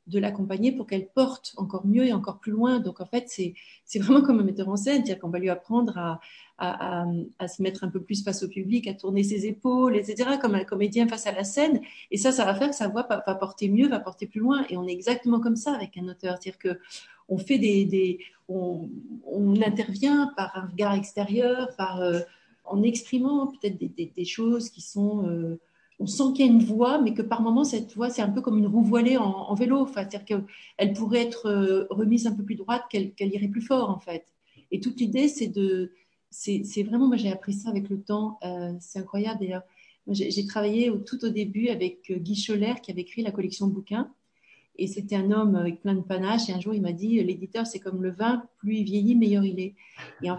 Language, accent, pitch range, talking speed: French, French, 195-240 Hz, 245 wpm